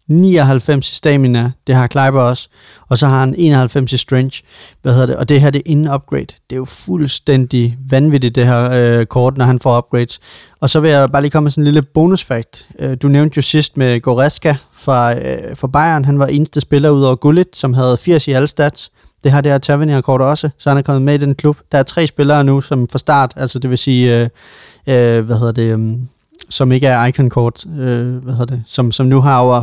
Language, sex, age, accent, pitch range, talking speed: Danish, male, 30-49, native, 125-145 Hz, 235 wpm